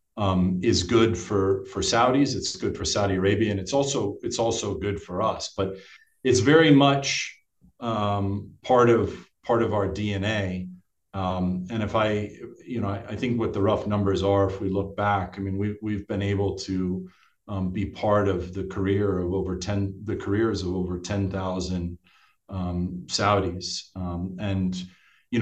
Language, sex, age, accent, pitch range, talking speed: English, male, 40-59, American, 95-105 Hz, 175 wpm